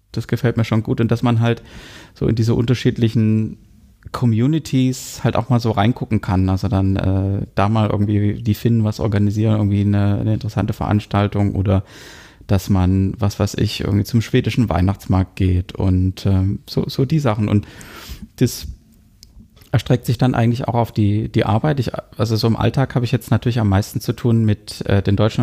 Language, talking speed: German, 185 wpm